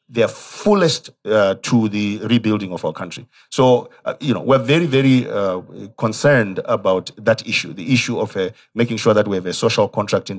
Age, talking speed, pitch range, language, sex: 40-59, 195 wpm, 110-130 Hz, English, male